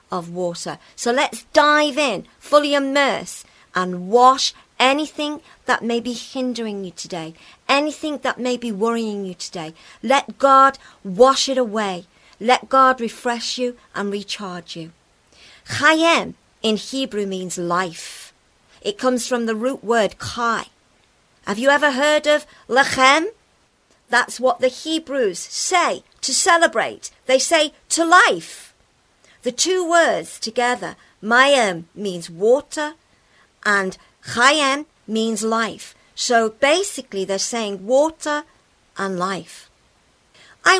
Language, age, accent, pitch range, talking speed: English, 50-69, British, 195-275 Hz, 125 wpm